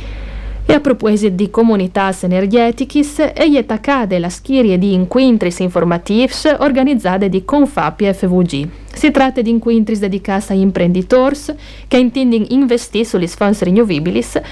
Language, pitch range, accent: Italian, 180-245 Hz, native